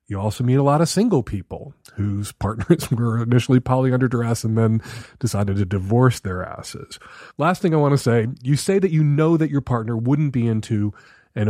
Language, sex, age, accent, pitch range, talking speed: English, male, 40-59, American, 110-145 Hz, 205 wpm